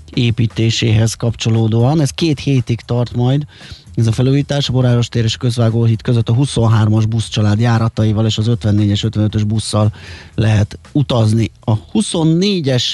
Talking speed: 145 wpm